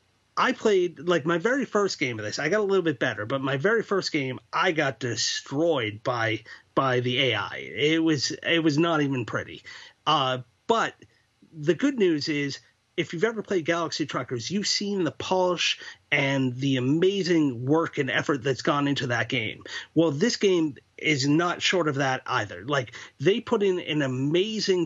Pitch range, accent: 135-180 Hz, American